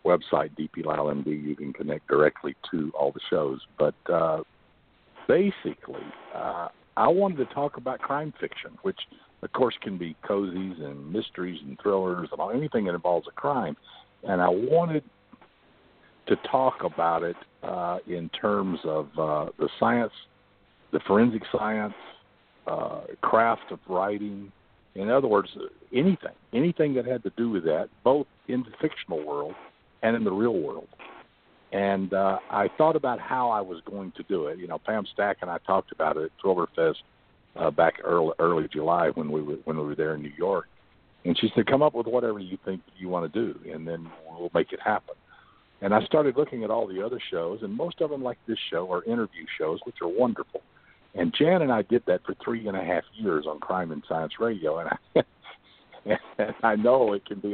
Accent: American